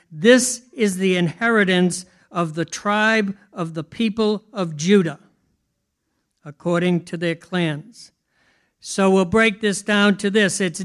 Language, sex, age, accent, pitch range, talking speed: English, male, 60-79, American, 195-225 Hz, 135 wpm